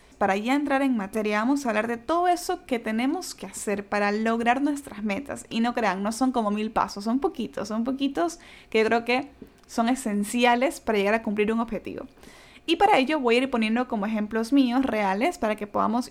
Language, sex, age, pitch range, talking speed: Spanish, female, 10-29, 215-260 Hz, 210 wpm